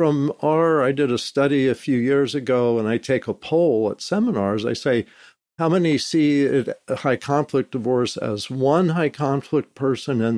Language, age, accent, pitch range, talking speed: English, 50-69, American, 125-165 Hz, 180 wpm